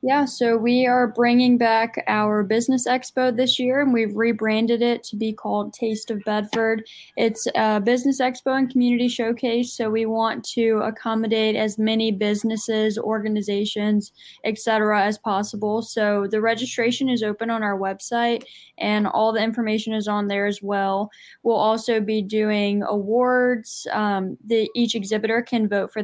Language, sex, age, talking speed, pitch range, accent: English, female, 10-29, 155 wpm, 215-240 Hz, American